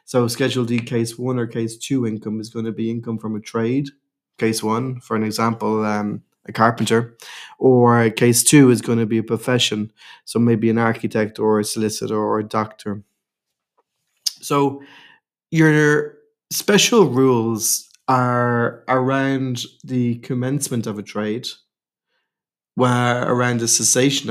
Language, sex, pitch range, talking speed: English, male, 110-135 Hz, 145 wpm